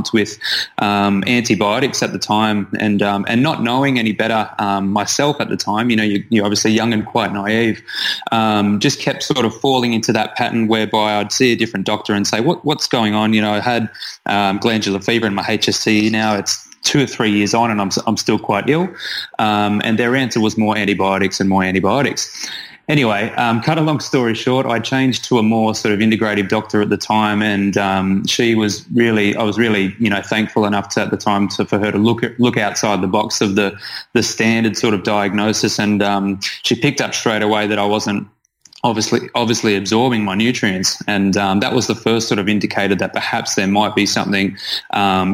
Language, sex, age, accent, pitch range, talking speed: English, male, 20-39, Australian, 100-115 Hz, 215 wpm